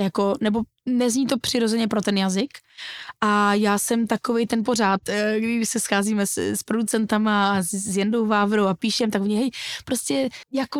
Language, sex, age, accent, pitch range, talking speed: Czech, female, 20-39, native, 205-250 Hz, 180 wpm